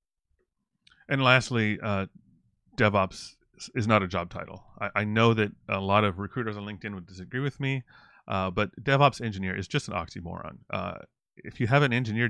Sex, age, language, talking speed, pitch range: male, 30-49, English, 180 wpm, 95-110 Hz